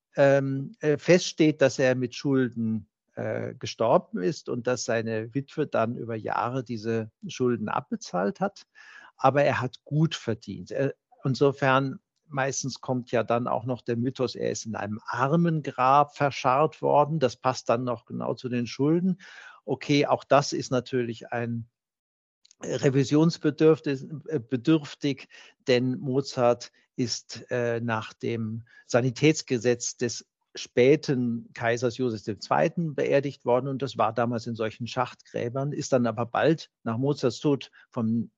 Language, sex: German, male